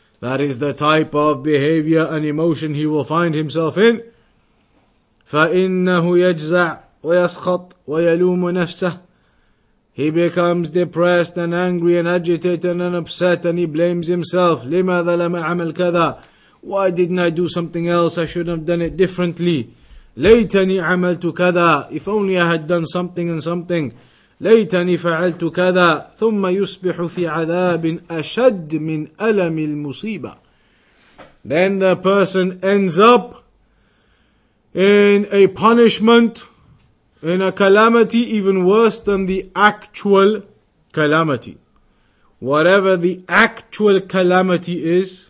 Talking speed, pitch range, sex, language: 115 wpm, 170-195 Hz, male, English